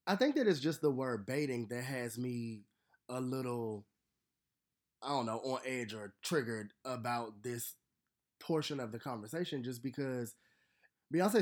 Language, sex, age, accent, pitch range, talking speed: English, male, 20-39, American, 115-145 Hz, 150 wpm